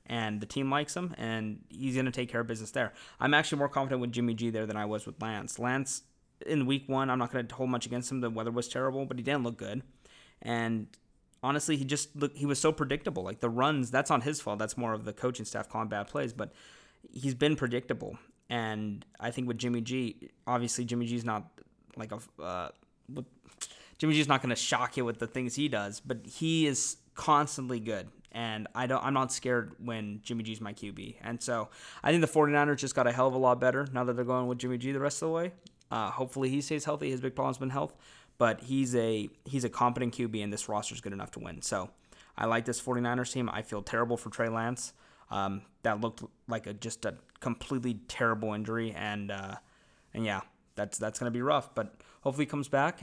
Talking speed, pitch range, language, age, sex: 230 wpm, 115-135 Hz, English, 20-39, male